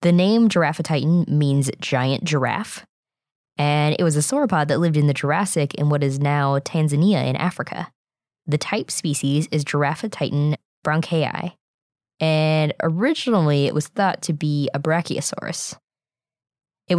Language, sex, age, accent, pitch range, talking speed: English, female, 20-39, American, 145-175 Hz, 140 wpm